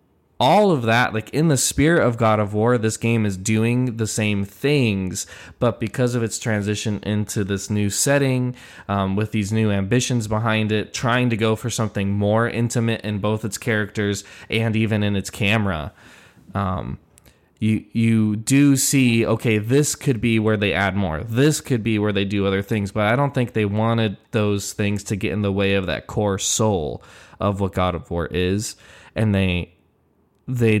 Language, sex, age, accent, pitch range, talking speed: English, male, 20-39, American, 100-115 Hz, 190 wpm